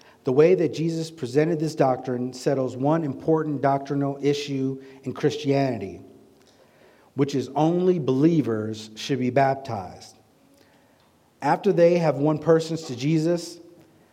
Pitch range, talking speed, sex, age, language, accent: 125-155 Hz, 120 wpm, male, 50-69, English, American